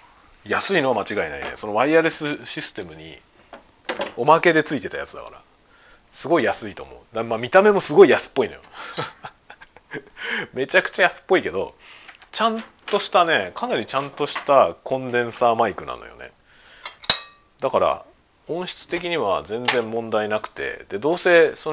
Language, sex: Japanese, male